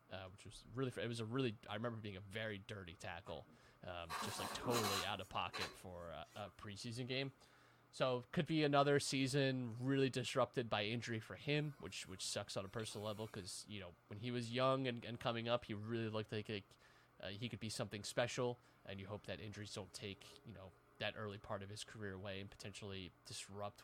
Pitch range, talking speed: 105-130 Hz, 215 wpm